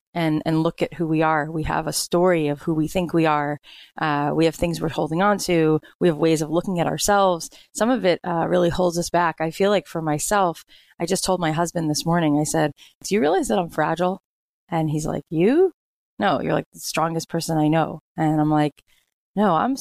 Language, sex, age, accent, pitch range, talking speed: English, female, 20-39, American, 155-175 Hz, 235 wpm